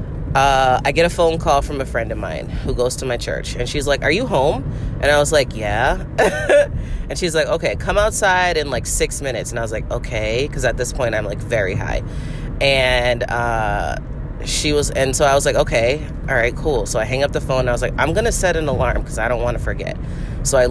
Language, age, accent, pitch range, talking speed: English, 30-49, American, 120-145 Hz, 250 wpm